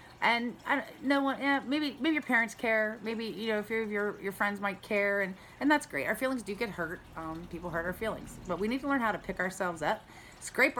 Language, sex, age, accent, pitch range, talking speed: English, female, 40-59, American, 175-230 Hz, 255 wpm